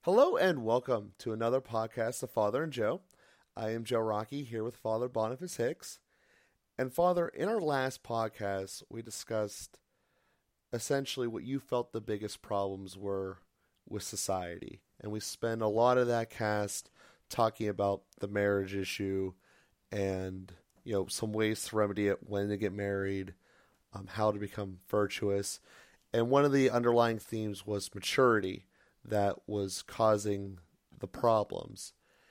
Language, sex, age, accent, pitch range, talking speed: English, male, 30-49, American, 100-125 Hz, 150 wpm